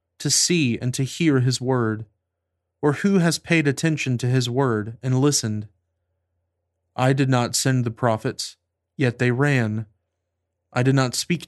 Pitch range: 95-135 Hz